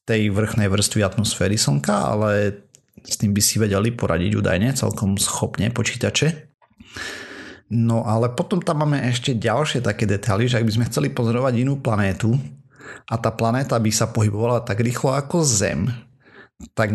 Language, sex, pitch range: Slovak, male, 105-120 Hz